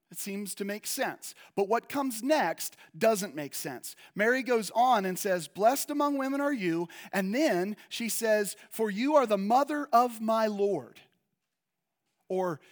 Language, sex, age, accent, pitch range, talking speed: English, male, 40-59, American, 185-265 Hz, 165 wpm